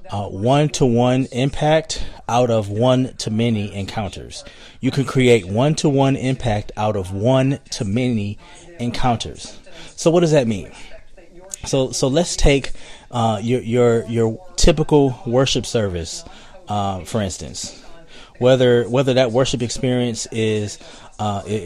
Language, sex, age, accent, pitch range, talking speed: English, male, 20-39, American, 105-130 Hz, 135 wpm